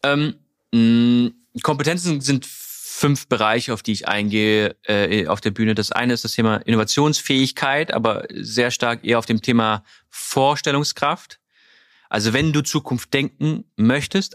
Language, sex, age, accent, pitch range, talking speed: German, male, 30-49, German, 110-140 Hz, 140 wpm